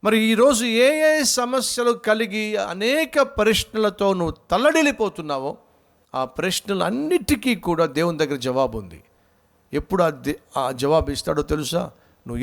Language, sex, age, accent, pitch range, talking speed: Telugu, male, 50-69, native, 135-230 Hz, 120 wpm